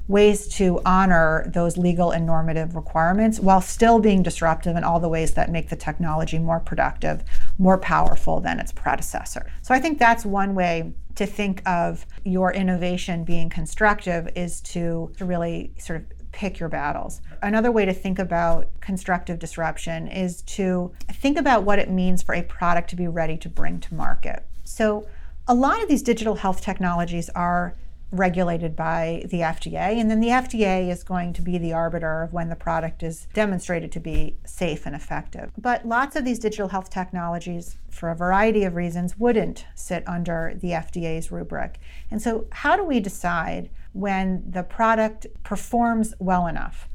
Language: English